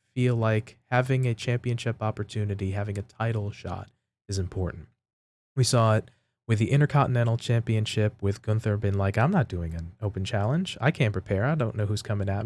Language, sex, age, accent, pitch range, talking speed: English, male, 20-39, American, 105-125 Hz, 185 wpm